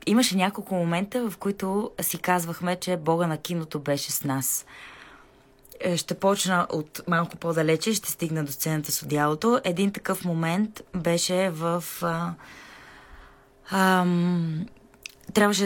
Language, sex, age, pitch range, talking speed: Bulgarian, female, 20-39, 155-190 Hz, 125 wpm